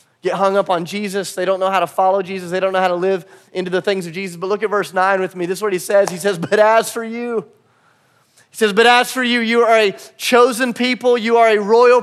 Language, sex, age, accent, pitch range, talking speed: English, male, 30-49, American, 195-250 Hz, 280 wpm